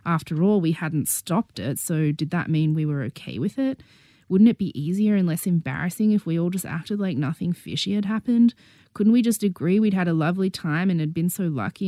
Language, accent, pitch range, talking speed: English, Australian, 150-185 Hz, 230 wpm